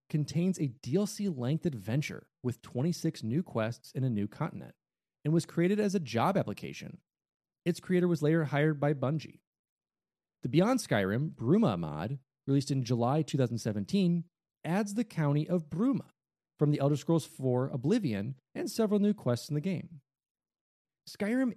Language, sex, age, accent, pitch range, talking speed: English, male, 30-49, American, 140-205 Hz, 150 wpm